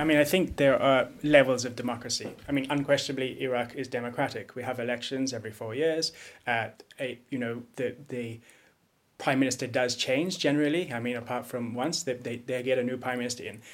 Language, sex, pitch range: English, male, 125-145 Hz